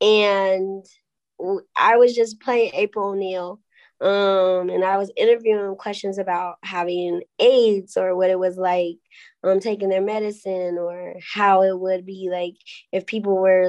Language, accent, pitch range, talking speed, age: English, American, 185-215 Hz, 150 wpm, 20-39